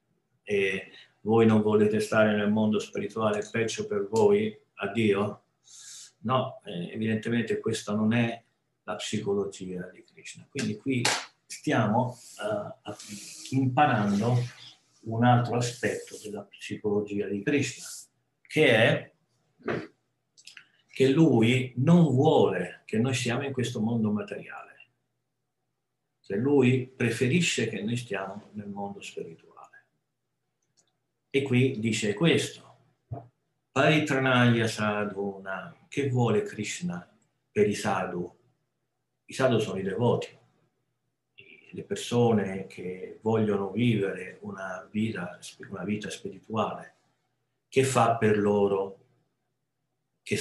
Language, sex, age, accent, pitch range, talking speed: Italian, male, 50-69, native, 105-130 Hz, 105 wpm